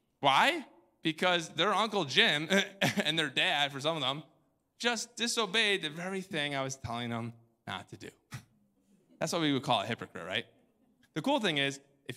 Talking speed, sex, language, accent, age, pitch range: 180 wpm, male, English, American, 20-39, 120-155 Hz